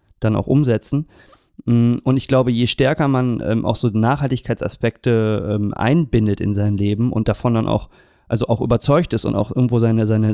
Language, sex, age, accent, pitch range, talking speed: German, male, 30-49, German, 110-130 Hz, 180 wpm